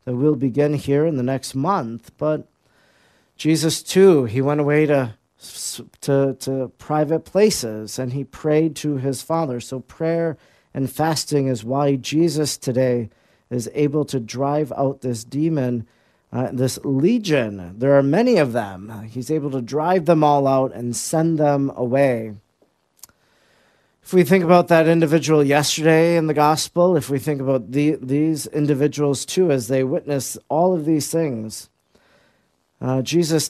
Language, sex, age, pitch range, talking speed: English, male, 40-59, 130-160 Hz, 150 wpm